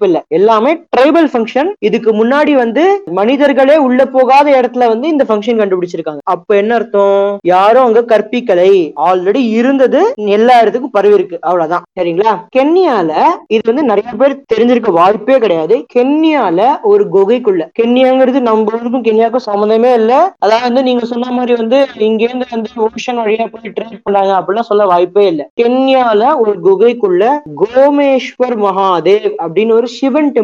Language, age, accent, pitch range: Tamil, 20-39, native, 200-260 Hz